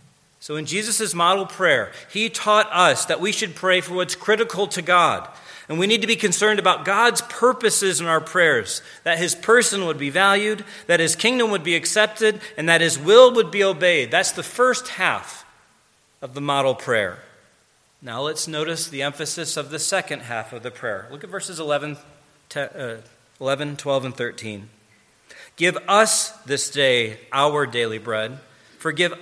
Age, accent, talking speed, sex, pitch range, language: 40-59, American, 175 wpm, male, 135-200 Hz, English